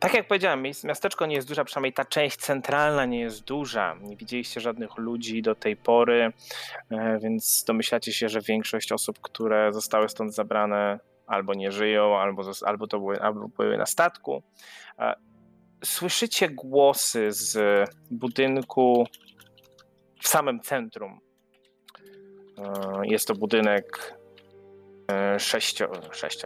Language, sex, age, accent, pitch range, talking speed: Polish, male, 20-39, native, 100-130 Hz, 120 wpm